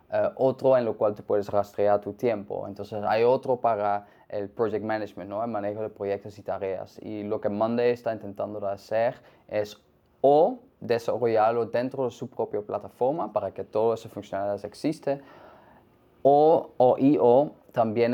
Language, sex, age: Spanish, male, 20-39